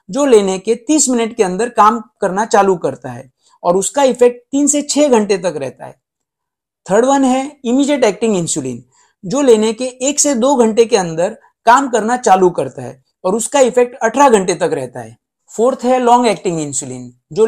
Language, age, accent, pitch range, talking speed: Hindi, 50-69, native, 190-255 Hz, 185 wpm